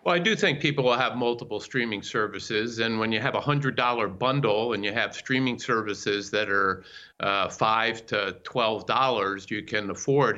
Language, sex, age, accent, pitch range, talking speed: English, male, 50-69, American, 110-145 Hz, 180 wpm